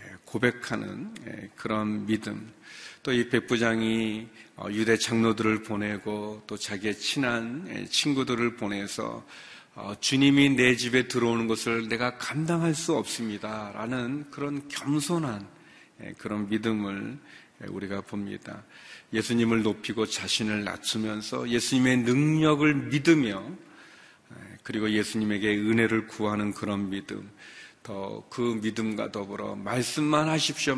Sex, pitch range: male, 105-130 Hz